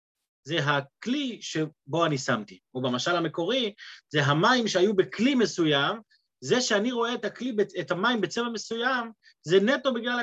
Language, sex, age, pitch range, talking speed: Hebrew, male, 30-49, 150-225 Hz, 145 wpm